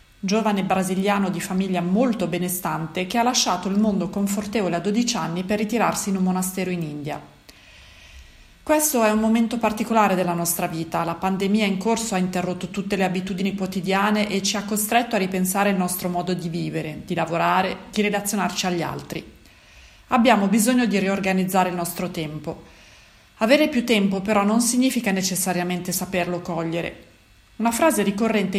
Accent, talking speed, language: native, 160 wpm, Italian